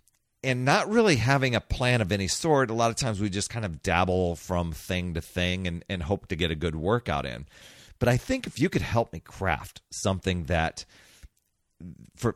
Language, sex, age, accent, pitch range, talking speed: English, male, 40-59, American, 95-130 Hz, 210 wpm